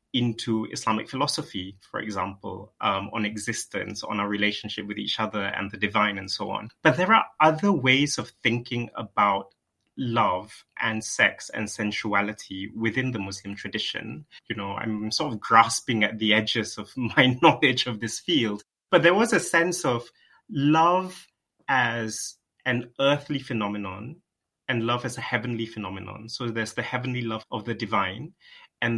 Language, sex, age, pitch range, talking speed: English, male, 20-39, 105-130 Hz, 160 wpm